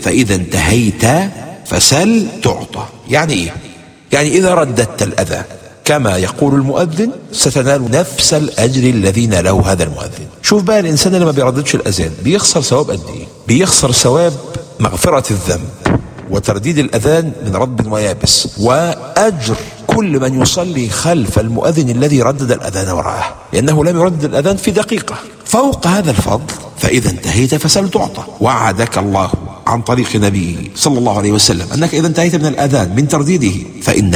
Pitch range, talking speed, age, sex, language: 105-165 Hz, 135 wpm, 50-69, male, English